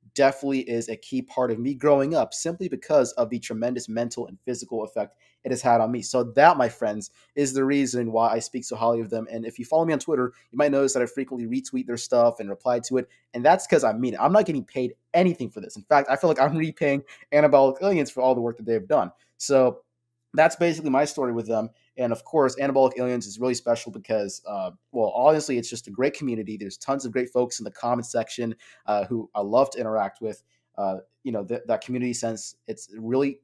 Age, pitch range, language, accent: 30-49, 115-140 Hz, English, American